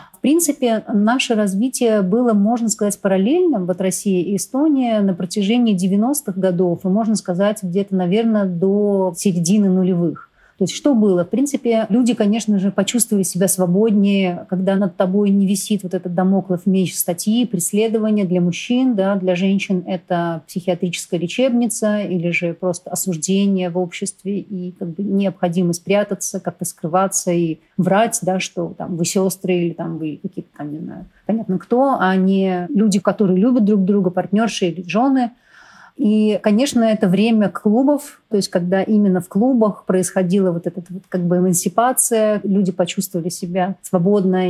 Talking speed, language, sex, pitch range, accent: 155 wpm, Russian, female, 180-215 Hz, native